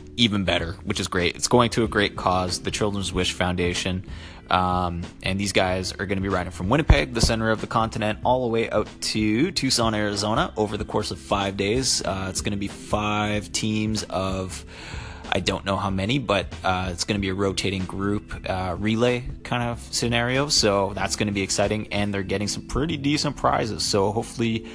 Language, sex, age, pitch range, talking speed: English, male, 30-49, 90-110 Hz, 210 wpm